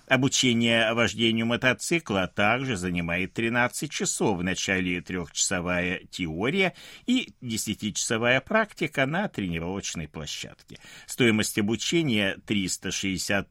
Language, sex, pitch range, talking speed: Russian, male, 95-155 Hz, 90 wpm